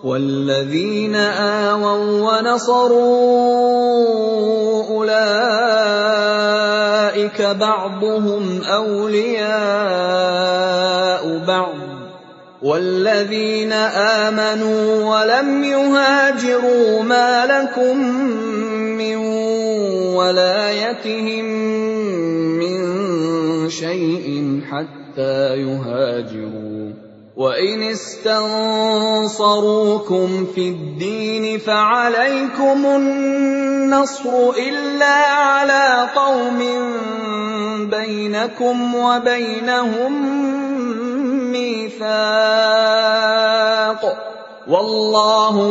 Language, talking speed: Indonesian, 40 wpm